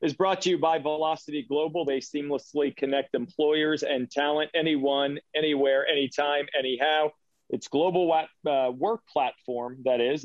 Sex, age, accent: male, 40-59, American